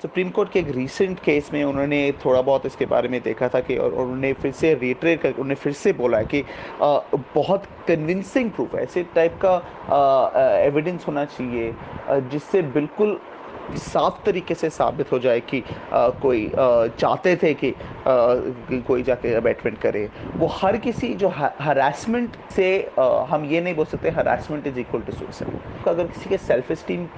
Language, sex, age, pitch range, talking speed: Hindi, male, 30-49, 140-185 Hz, 175 wpm